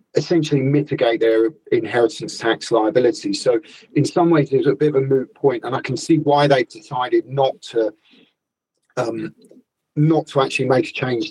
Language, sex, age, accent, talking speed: English, male, 40-59, British, 175 wpm